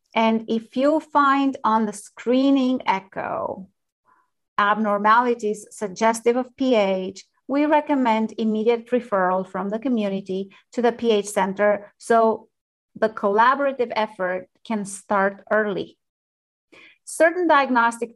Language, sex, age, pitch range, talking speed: English, female, 30-49, 205-235 Hz, 105 wpm